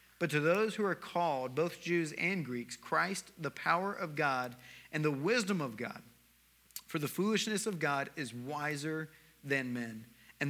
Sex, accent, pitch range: male, American, 130-165 Hz